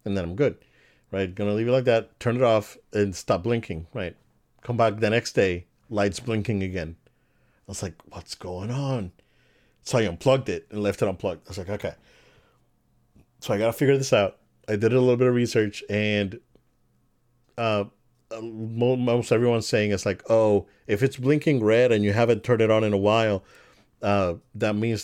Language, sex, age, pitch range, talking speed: English, male, 40-59, 100-120 Hz, 195 wpm